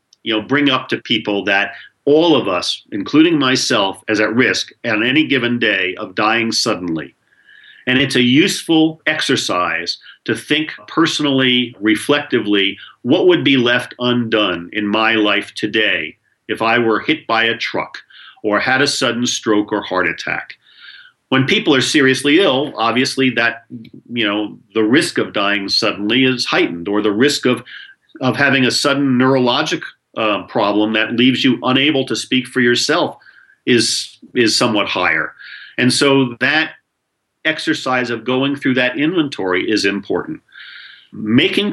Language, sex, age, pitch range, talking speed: English, male, 50-69, 110-140 Hz, 150 wpm